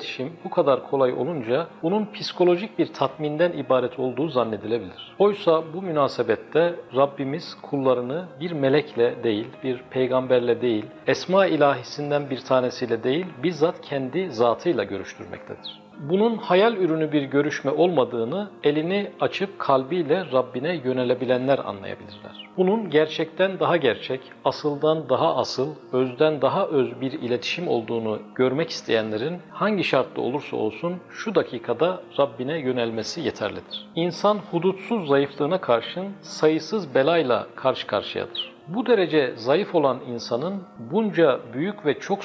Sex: male